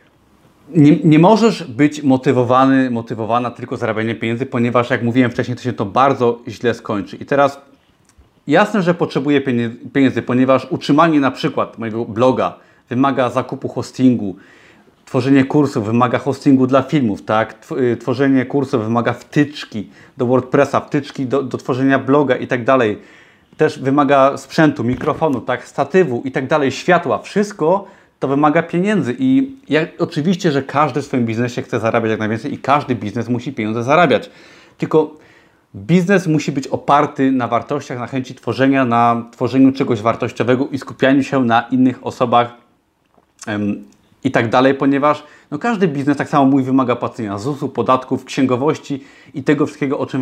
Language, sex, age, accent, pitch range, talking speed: Polish, male, 30-49, native, 125-145 Hz, 155 wpm